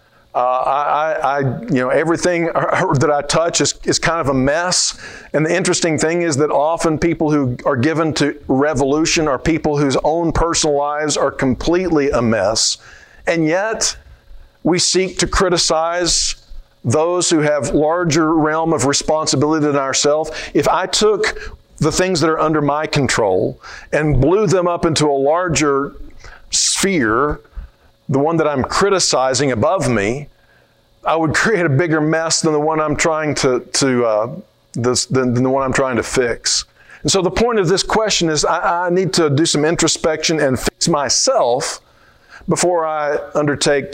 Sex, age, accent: male, 50-69, American